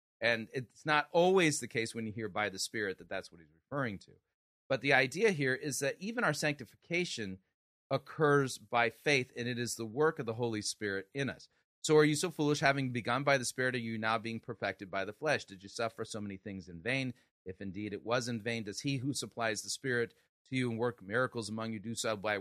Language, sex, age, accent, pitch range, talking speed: English, male, 40-59, American, 105-140 Hz, 240 wpm